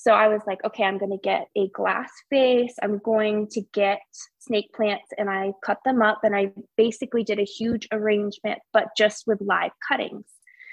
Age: 20-39